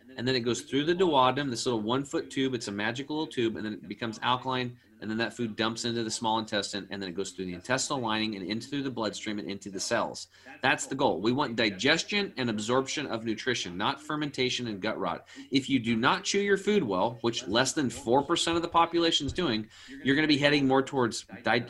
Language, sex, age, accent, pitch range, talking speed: English, male, 30-49, American, 110-140 Hz, 240 wpm